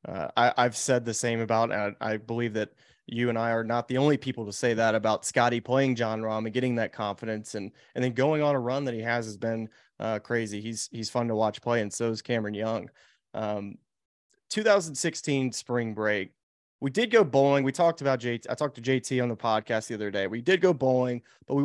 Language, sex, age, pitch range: English, male, 20-39, 115-140 Hz